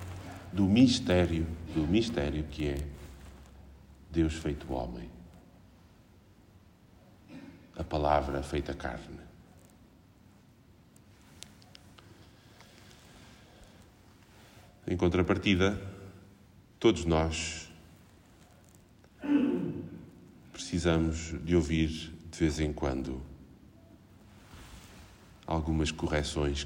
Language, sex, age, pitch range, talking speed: Portuguese, male, 50-69, 80-105 Hz, 60 wpm